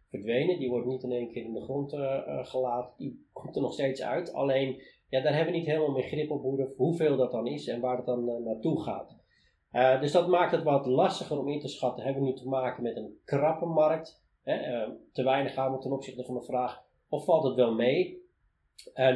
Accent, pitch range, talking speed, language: Dutch, 125-145 Hz, 235 wpm, Dutch